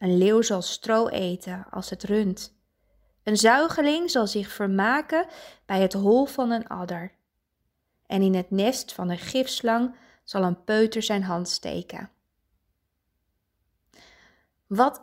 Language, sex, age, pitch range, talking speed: Dutch, female, 20-39, 170-220 Hz, 130 wpm